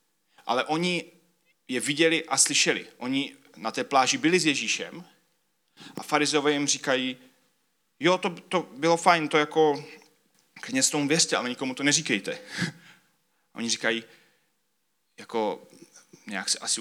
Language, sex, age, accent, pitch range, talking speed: Czech, male, 30-49, native, 125-160 Hz, 130 wpm